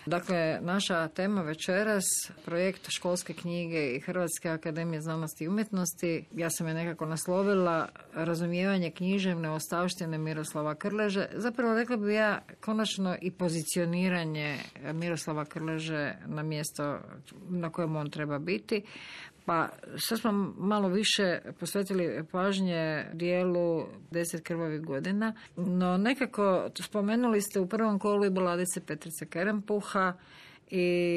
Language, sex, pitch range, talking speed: Croatian, female, 165-195 Hz, 120 wpm